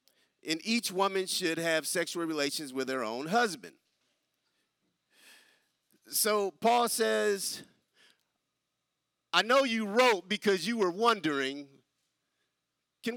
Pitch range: 160-225 Hz